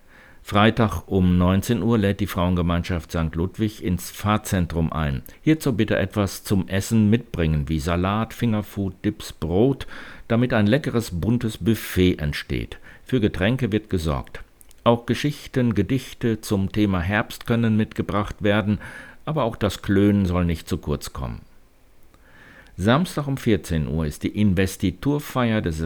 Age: 60-79